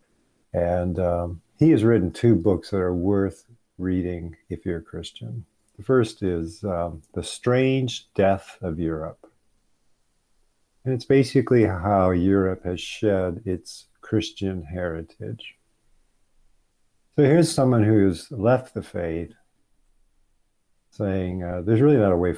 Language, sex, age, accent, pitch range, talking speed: English, male, 50-69, American, 90-110 Hz, 130 wpm